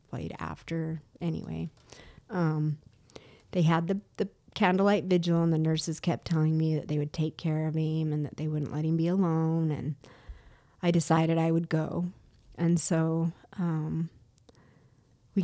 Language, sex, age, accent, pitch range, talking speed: English, female, 30-49, American, 155-205 Hz, 155 wpm